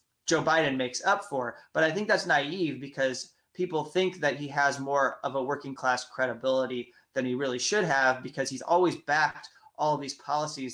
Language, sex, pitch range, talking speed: English, male, 135-170 Hz, 195 wpm